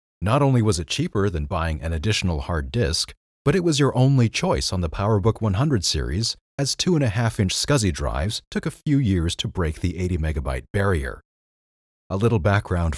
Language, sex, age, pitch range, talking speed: English, male, 30-49, 80-120 Hz, 185 wpm